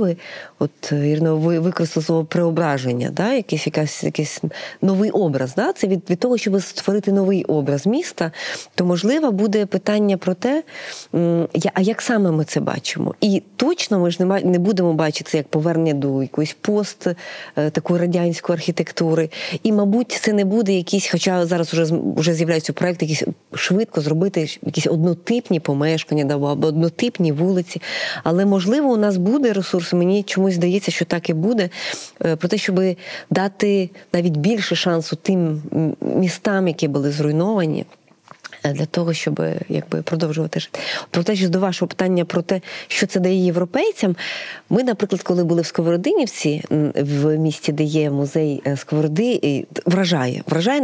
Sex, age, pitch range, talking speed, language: female, 30-49, 160-200 Hz, 150 wpm, Ukrainian